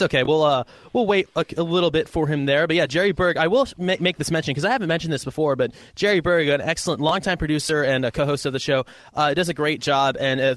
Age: 20-39